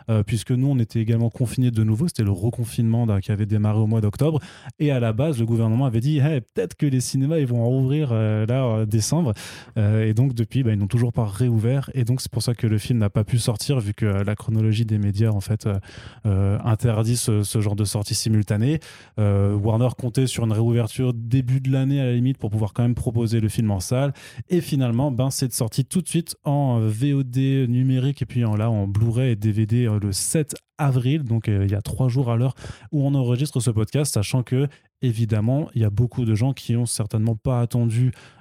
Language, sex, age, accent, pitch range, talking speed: French, male, 20-39, French, 110-130 Hz, 235 wpm